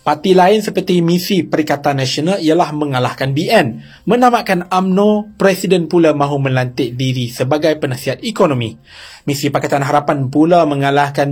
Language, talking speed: Malay, 125 wpm